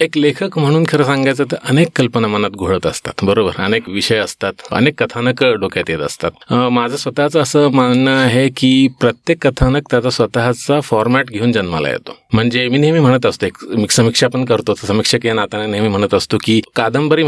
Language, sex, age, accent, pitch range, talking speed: Marathi, male, 30-49, native, 115-145 Hz, 170 wpm